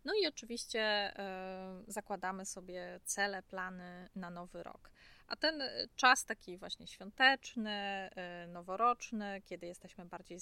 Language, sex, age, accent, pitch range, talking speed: Polish, female, 20-39, native, 180-220 Hz, 115 wpm